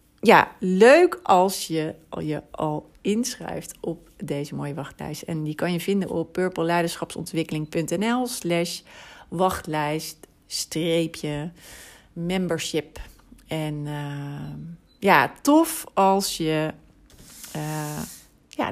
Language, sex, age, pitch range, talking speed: Dutch, female, 40-59, 155-185 Hz, 90 wpm